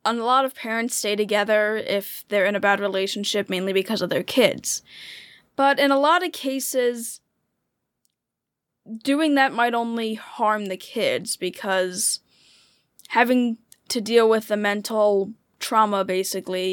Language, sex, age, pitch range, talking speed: English, female, 10-29, 190-240 Hz, 140 wpm